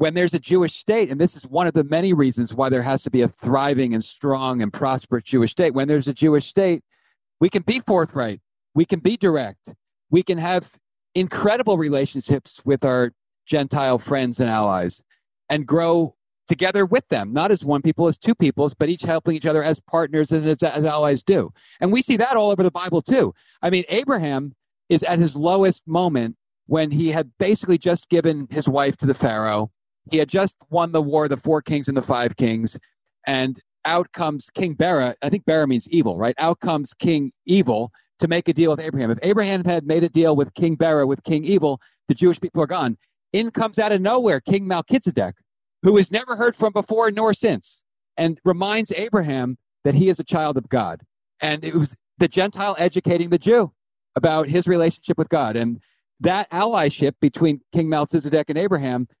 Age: 40-59